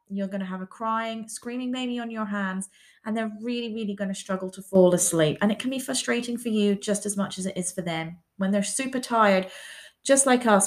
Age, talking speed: 20-39, 240 wpm